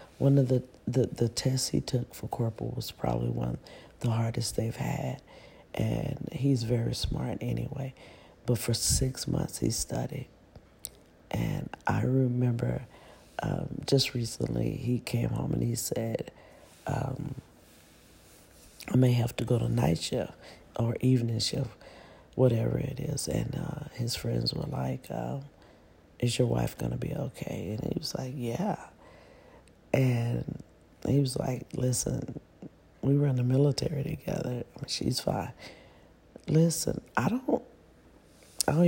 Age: 40-59